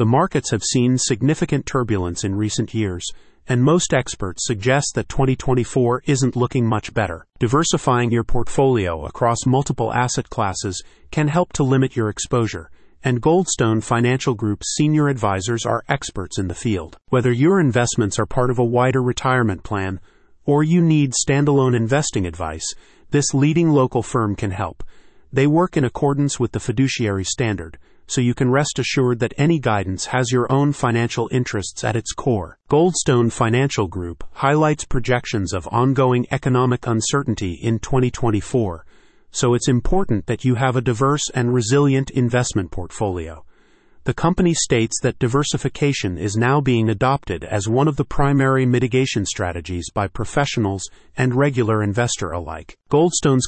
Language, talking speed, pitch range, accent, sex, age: English, 150 wpm, 110-135 Hz, American, male, 40-59